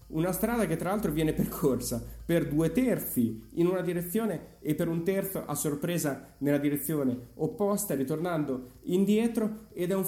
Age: 30-49